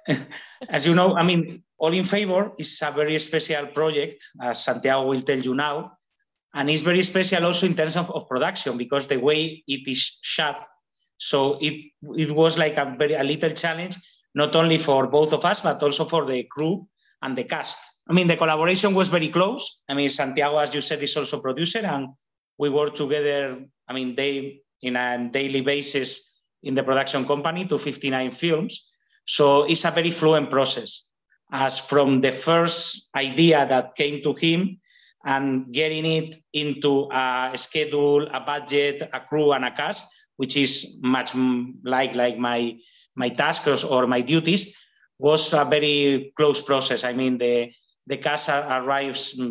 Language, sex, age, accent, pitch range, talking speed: English, male, 30-49, Spanish, 130-160 Hz, 175 wpm